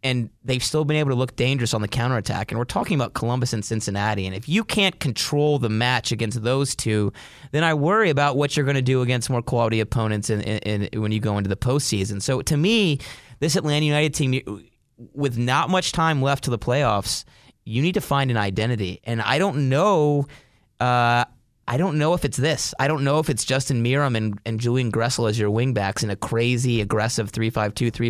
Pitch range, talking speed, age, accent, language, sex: 110-145 Hz, 210 wpm, 30-49, American, English, male